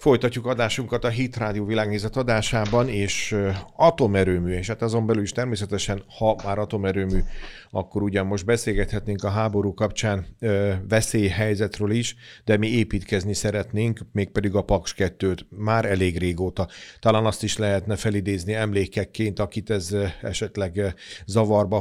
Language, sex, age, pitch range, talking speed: Hungarian, male, 40-59, 100-110 Hz, 130 wpm